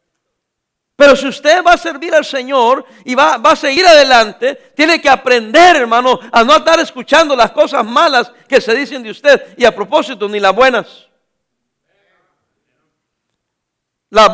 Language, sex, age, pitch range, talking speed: English, male, 50-69, 230-325 Hz, 155 wpm